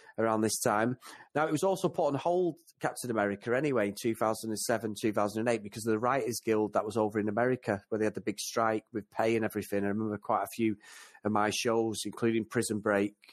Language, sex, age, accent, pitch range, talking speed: English, male, 30-49, British, 110-130 Hz, 240 wpm